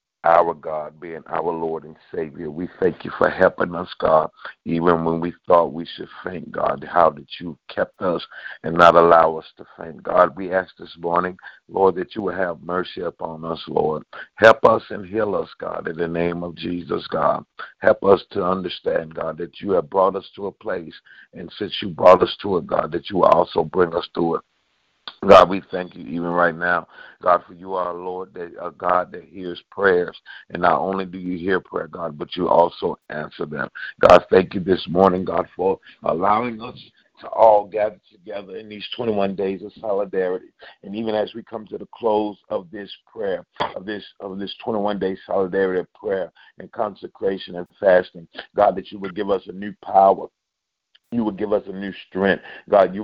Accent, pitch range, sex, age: American, 90-105 Hz, male, 50-69